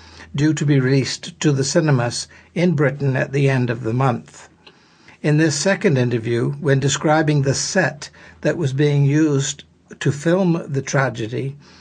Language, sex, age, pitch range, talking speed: English, male, 60-79, 125-155 Hz, 160 wpm